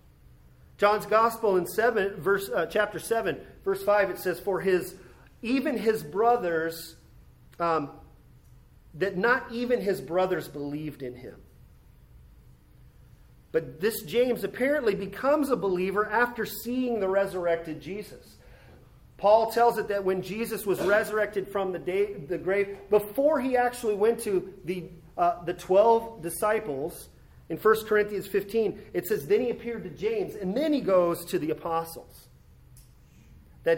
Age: 40-59